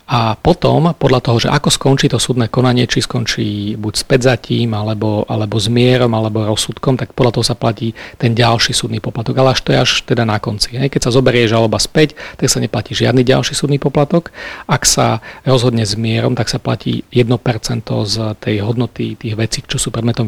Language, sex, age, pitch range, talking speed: Slovak, male, 40-59, 115-130 Hz, 195 wpm